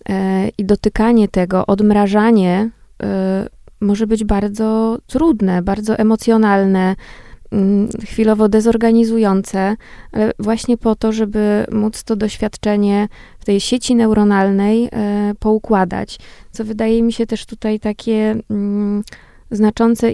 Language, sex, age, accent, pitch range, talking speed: Polish, female, 20-39, native, 200-220 Hz, 100 wpm